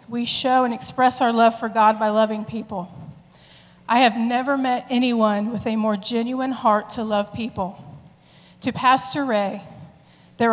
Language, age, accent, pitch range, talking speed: English, 40-59, American, 205-245 Hz, 160 wpm